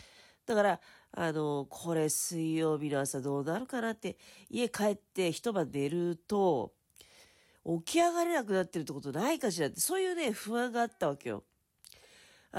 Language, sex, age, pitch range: Japanese, female, 40-59, 155-245 Hz